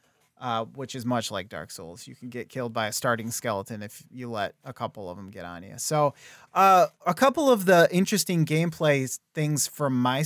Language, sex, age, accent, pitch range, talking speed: English, male, 30-49, American, 125-155 Hz, 210 wpm